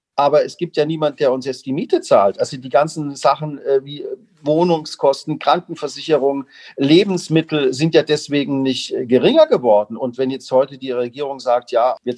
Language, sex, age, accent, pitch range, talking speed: German, male, 40-59, German, 120-155 Hz, 170 wpm